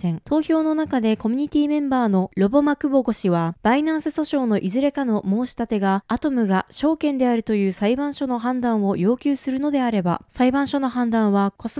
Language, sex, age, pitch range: Japanese, female, 20-39, 210-285 Hz